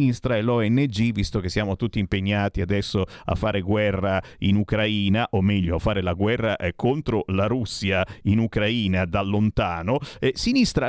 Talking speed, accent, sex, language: 160 wpm, native, male, Italian